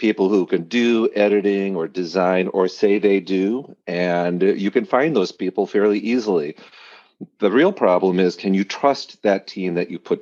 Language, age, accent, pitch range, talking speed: English, 40-59, American, 90-110 Hz, 180 wpm